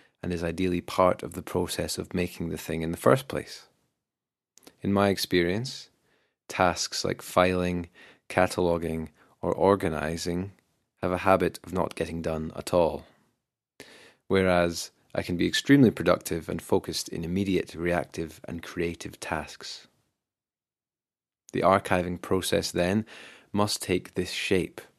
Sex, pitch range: male, 80-95 Hz